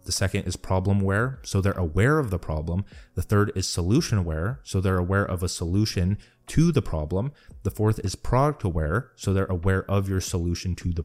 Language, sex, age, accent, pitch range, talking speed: English, male, 30-49, American, 90-105 Hz, 190 wpm